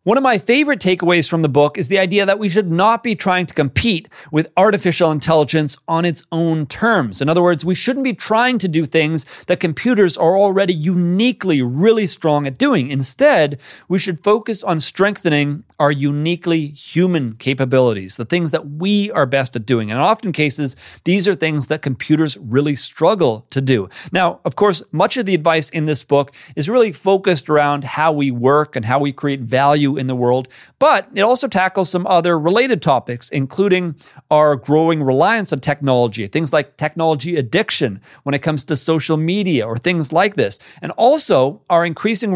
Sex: male